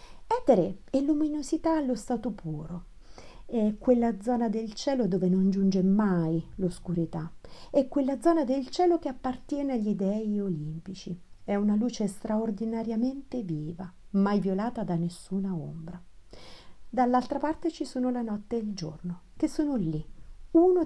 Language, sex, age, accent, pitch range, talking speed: Italian, female, 50-69, native, 175-245 Hz, 140 wpm